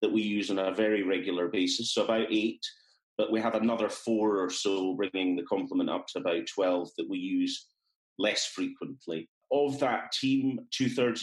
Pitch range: 100-135 Hz